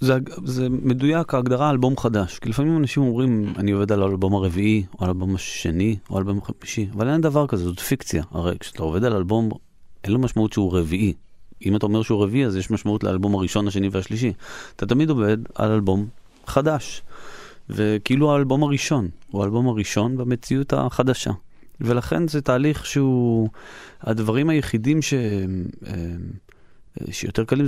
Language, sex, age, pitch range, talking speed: Hebrew, male, 30-49, 95-130 Hz, 160 wpm